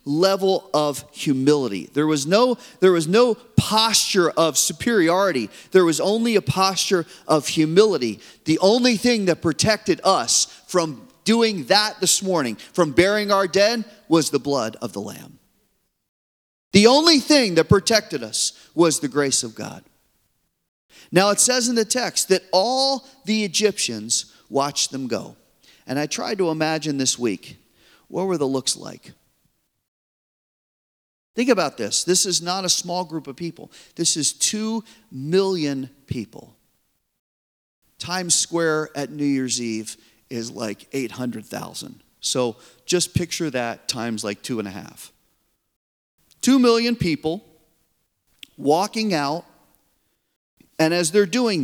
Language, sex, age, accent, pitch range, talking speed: English, male, 40-59, American, 130-200 Hz, 140 wpm